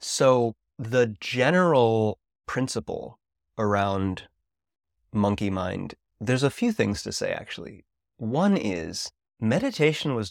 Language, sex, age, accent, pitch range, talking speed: English, male, 30-49, American, 95-115 Hz, 105 wpm